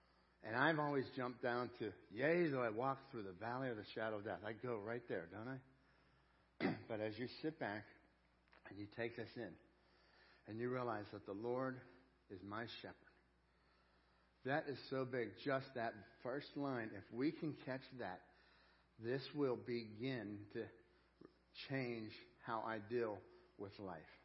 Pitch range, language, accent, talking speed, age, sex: 115-135 Hz, English, American, 165 wpm, 60-79, male